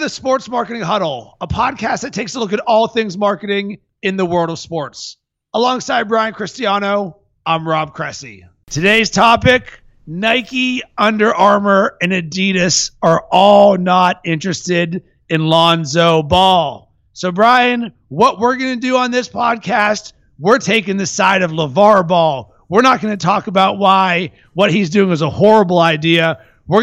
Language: English